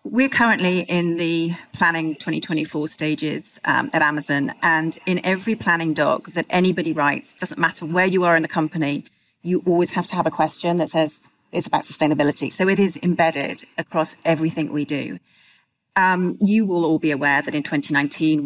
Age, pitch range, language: 40-59, 155-175 Hz, English